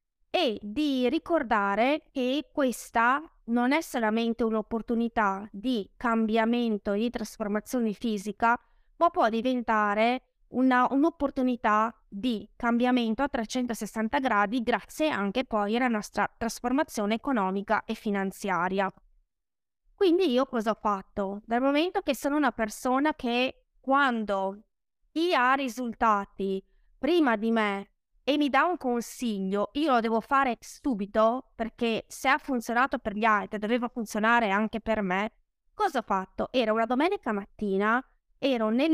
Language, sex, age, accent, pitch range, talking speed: Italian, female, 20-39, native, 210-270 Hz, 130 wpm